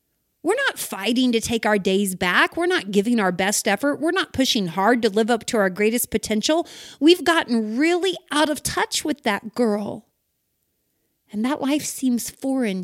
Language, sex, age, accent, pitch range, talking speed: English, female, 30-49, American, 215-290 Hz, 180 wpm